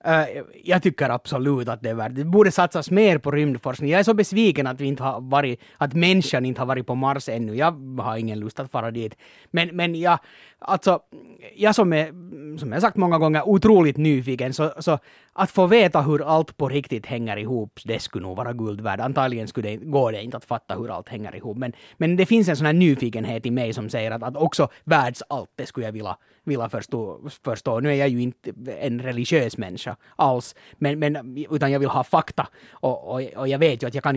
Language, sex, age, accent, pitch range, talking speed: Finnish, male, 30-49, native, 120-155 Hz, 225 wpm